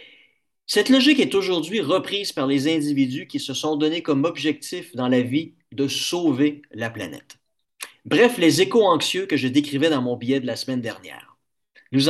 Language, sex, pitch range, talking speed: French, male, 135-200 Hz, 180 wpm